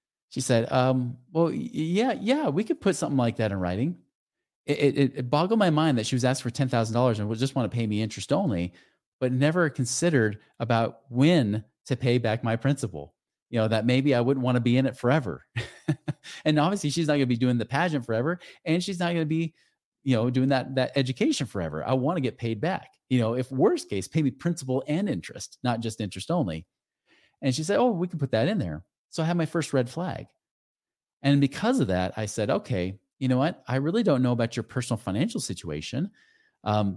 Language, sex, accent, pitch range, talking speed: English, male, American, 115-145 Hz, 225 wpm